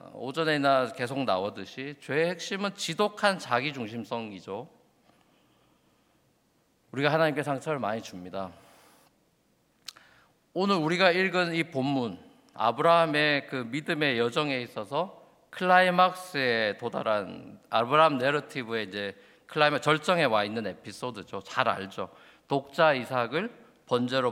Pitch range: 130-180 Hz